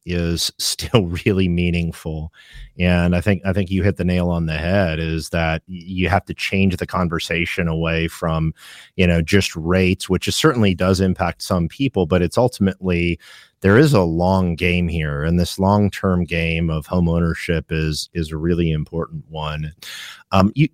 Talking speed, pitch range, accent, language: 180 wpm, 85-100 Hz, American, English